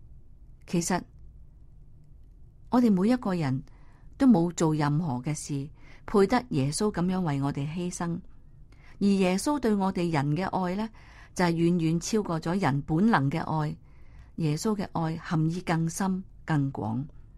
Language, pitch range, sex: Chinese, 155-210 Hz, female